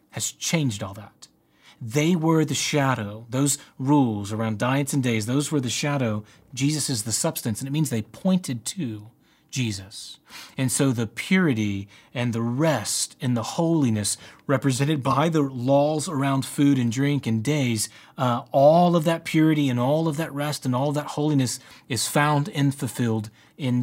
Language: English